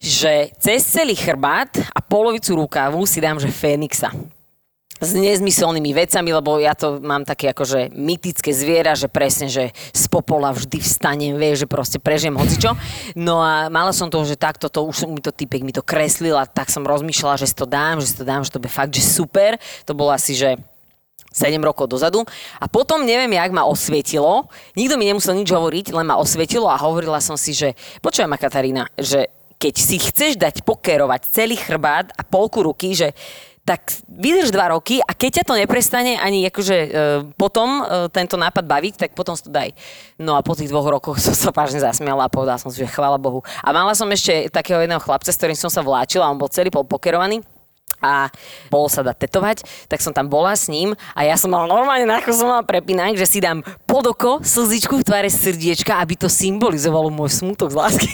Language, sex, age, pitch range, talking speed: Slovak, female, 20-39, 145-195 Hz, 205 wpm